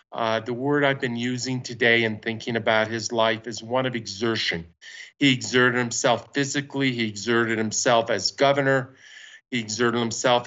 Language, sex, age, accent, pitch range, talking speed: English, male, 50-69, American, 110-130 Hz, 160 wpm